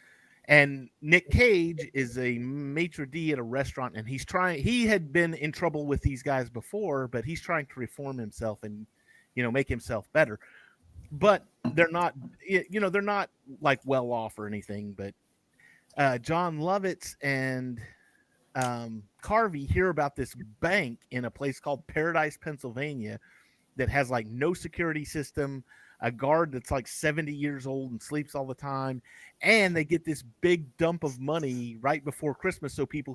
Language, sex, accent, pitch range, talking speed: English, male, American, 125-165 Hz, 170 wpm